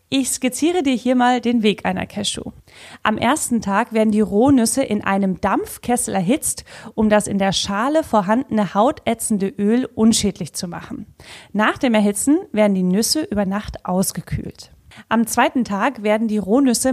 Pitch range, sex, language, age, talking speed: 200-255 Hz, female, German, 30-49, 160 wpm